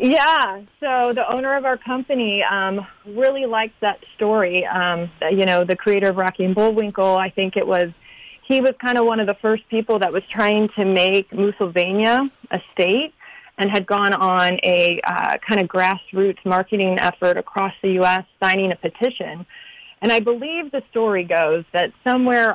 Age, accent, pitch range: 30-49, American, 185-225 Hz